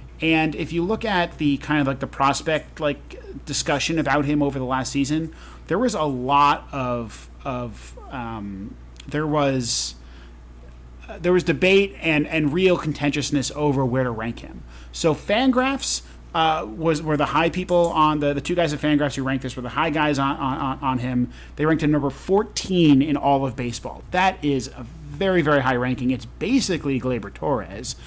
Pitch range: 125-155 Hz